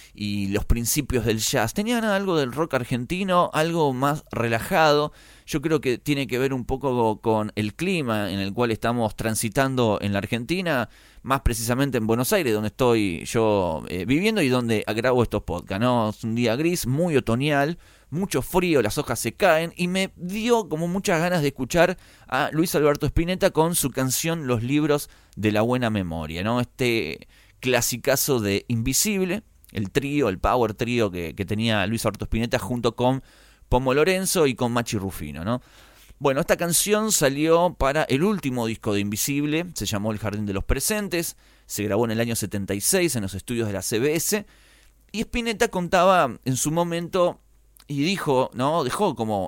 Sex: male